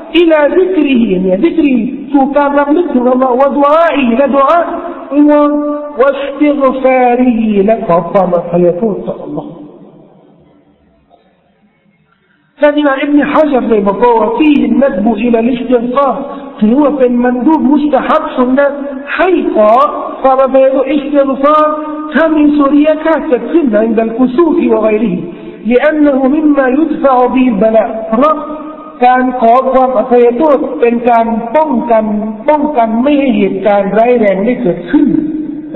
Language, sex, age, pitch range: Thai, male, 50-69, 230-300 Hz